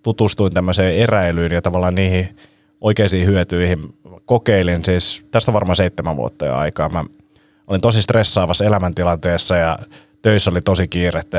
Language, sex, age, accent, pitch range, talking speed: Finnish, male, 30-49, native, 90-110 Hz, 140 wpm